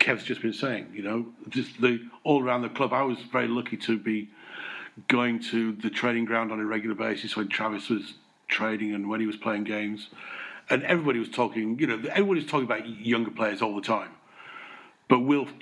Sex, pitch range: male, 110-135 Hz